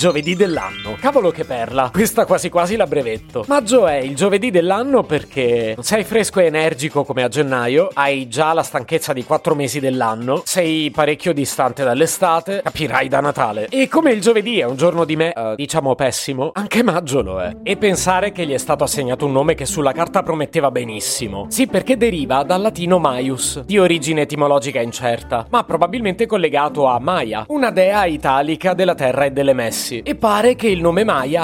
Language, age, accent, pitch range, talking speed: Italian, 30-49, native, 140-185 Hz, 185 wpm